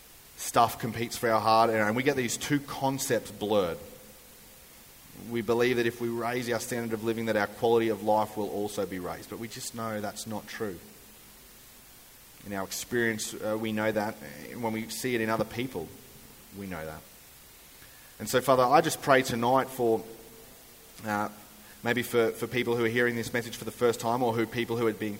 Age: 30-49